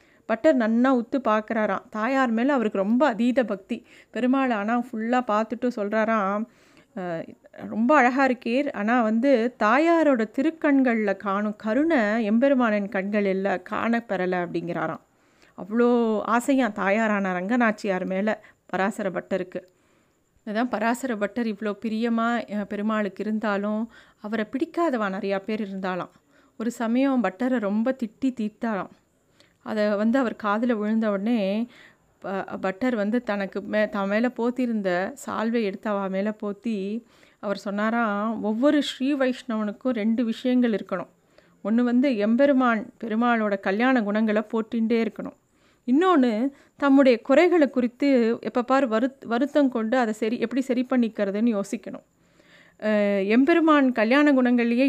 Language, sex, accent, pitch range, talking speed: Tamil, female, native, 210-255 Hz, 110 wpm